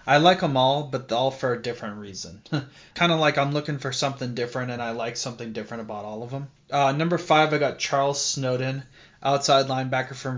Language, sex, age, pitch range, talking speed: English, male, 20-39, 125-145 Hz, 215 wpm